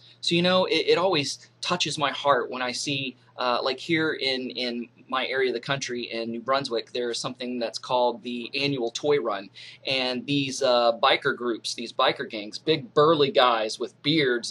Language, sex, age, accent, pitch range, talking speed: English, male, 30-49, American, 125-155 Hz, 195 wpm